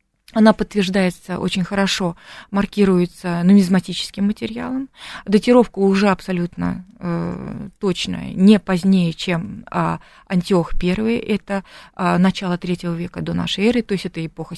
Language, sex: Russian, female